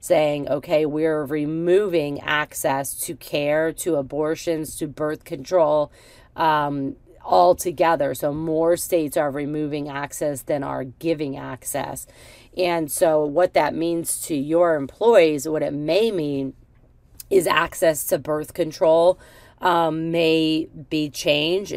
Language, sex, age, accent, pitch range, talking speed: English, female, 40-59, American, 140-165 Hz, 125 wpm